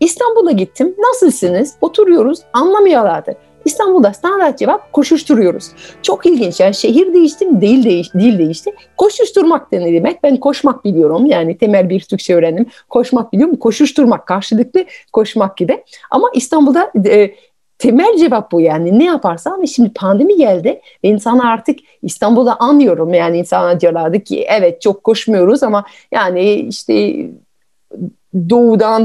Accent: native